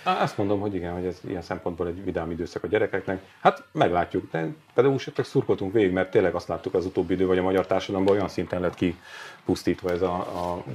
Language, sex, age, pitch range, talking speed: Hungarian, male, 40-59, 85-105 Hz, 205 wpm